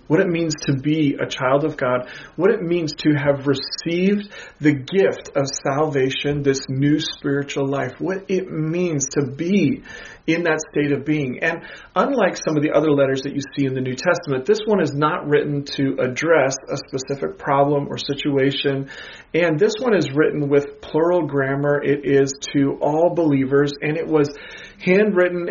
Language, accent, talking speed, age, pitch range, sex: English, American, 180 wpm, 40-59, 140-170 Hz, male